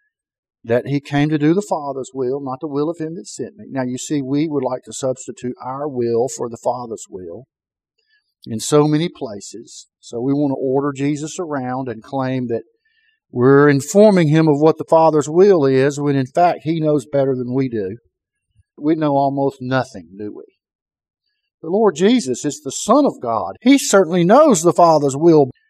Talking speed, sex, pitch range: 190 wpm, male, 135-195 Hz